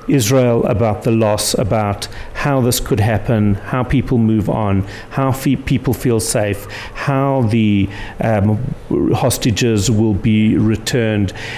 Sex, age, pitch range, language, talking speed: male, 50-69, 110-135 Hz, English, 130 wpm